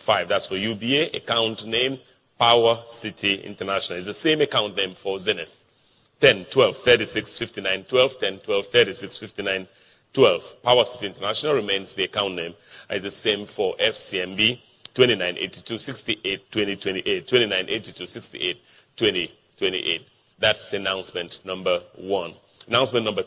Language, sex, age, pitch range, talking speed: English, male, 40-59, 100-145 Hz, 120 wpm